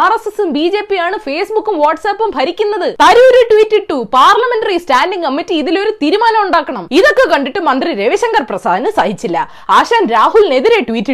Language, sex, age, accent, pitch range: Malayalam, female, 20-39, native, 260-420 Hz